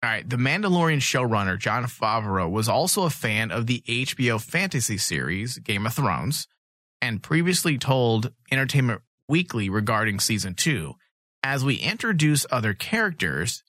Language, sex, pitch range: English, male, 105-140 Hz